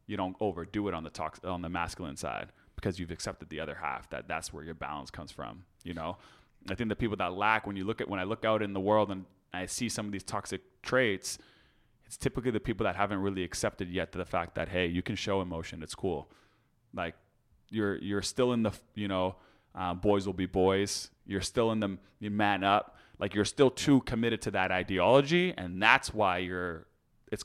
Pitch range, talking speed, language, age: 95-120 Hz, 230 wpm, English, 30-49